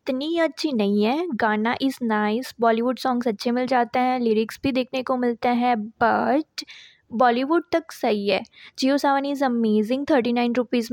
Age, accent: 20-39, native